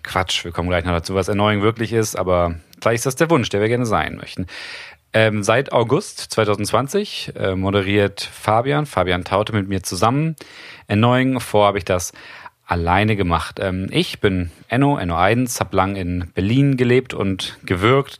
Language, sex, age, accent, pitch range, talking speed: German, male, 40-59, German, 95-125 Hz, 175 wpm